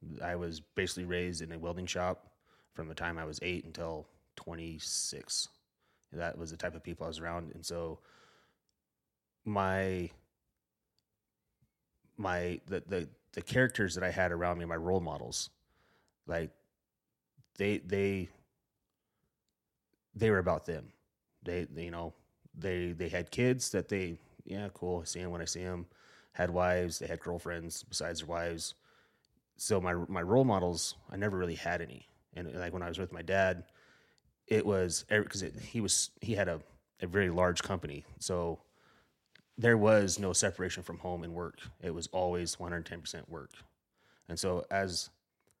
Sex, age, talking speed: male, 30-49, 165 wpm